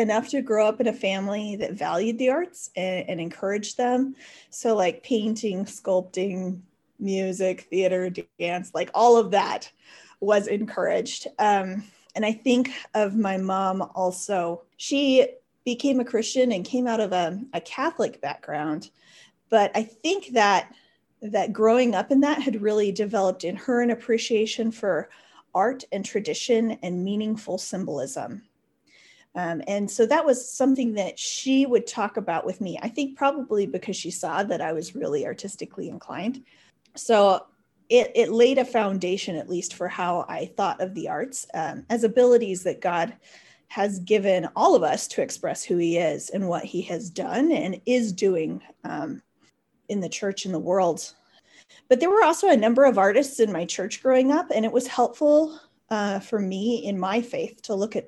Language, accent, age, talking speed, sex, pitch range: English, American, 30-49, 175 wpm, female, 190-250 Hz